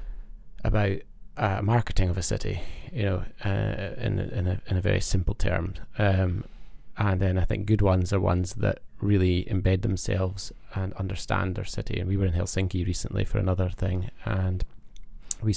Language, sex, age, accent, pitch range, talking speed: English, male, 20-39, British, 85-105 Hz, 175 wpm